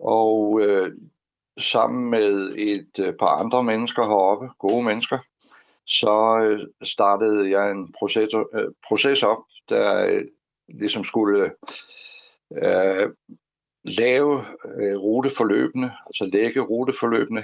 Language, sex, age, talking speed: Danish, male, 60-79, 110 wpm